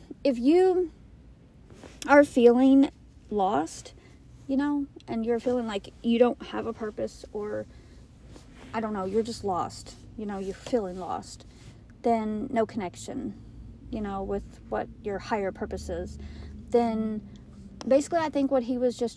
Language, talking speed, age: English, 145 wpm, 40-59